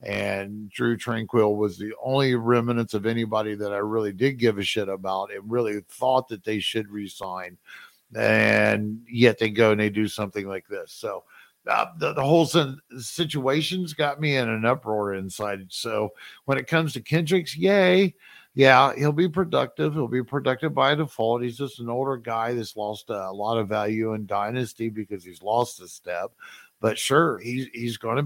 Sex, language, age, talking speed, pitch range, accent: male, English, 50-69, 180 wpm, 105-130 Hz, American